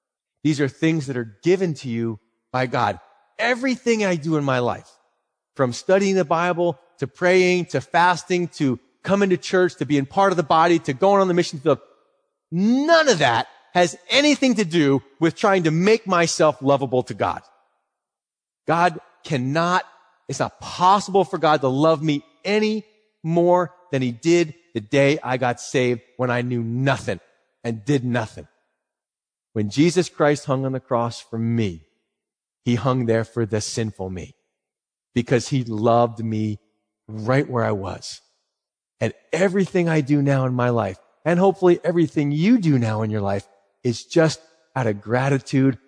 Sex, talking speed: male, 170 wpm